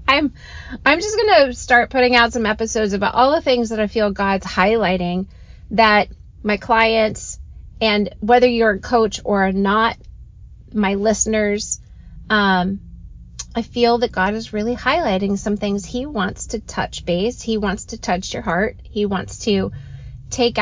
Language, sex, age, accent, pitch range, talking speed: English, female, 30-49, American, 185-225 Hz, 165 wpm